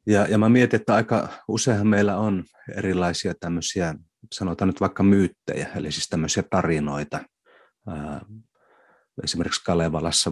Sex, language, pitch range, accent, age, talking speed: male, Finnish, 80-95 Hz, native, 30-49, 120 wpm